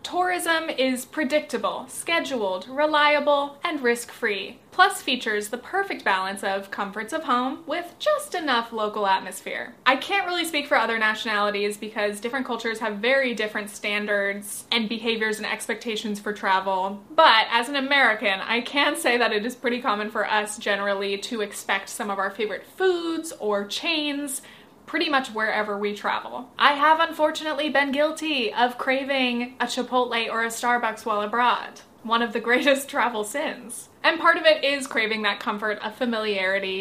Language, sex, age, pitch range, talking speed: English, female, 20-39, 215-275 Hz, 165 wpm